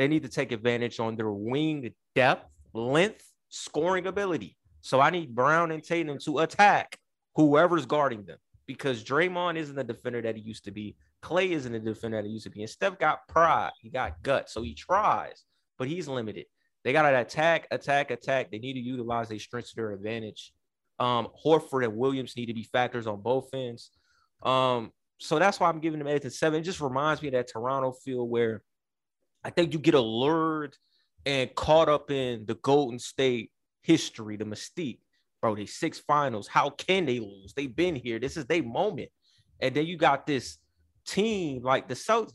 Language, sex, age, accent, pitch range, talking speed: English, male, 30-49, American, 120-175 Hz, 195 wpm